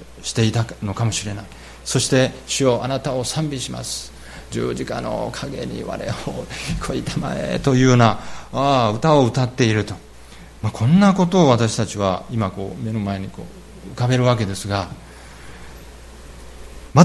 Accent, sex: native, male